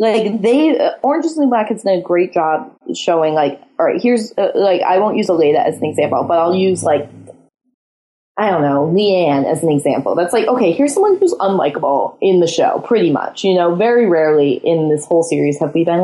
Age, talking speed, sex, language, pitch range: 20-39, 220 wpm, female, English, 175-245 Hz